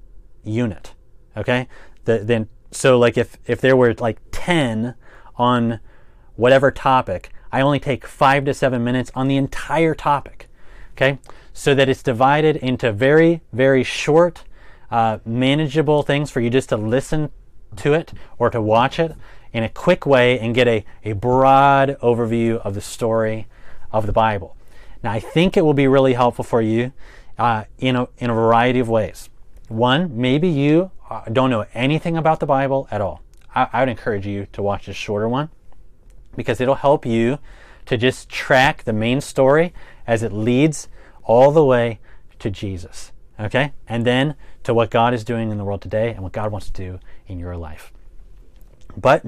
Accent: American